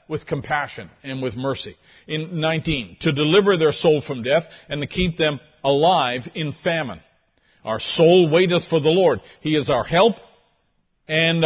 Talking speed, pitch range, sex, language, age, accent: 160 wpm, 125-165 Hz, male, English, 50-69, American